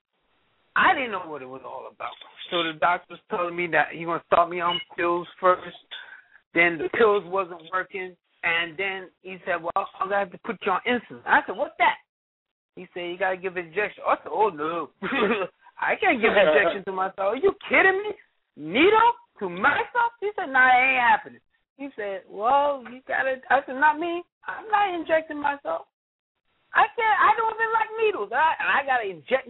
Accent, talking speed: American, 210 wpm